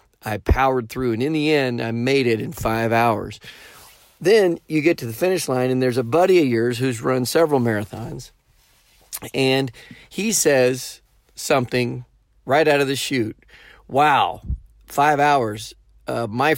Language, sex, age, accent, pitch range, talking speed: English, male, 40-59, American, 115-145 Hz, 160 wpm